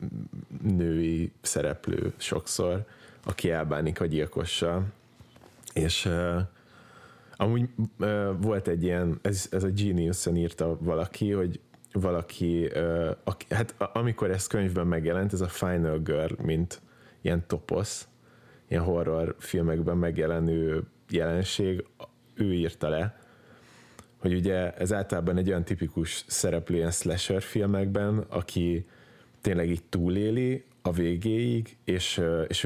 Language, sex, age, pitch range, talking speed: Hungarian, male, 30-49, 85-100 Hz, 110 wpm